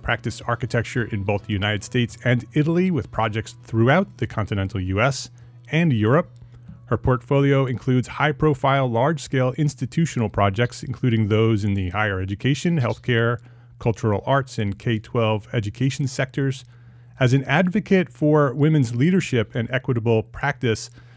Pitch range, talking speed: 110-135 Hz, 130 wpm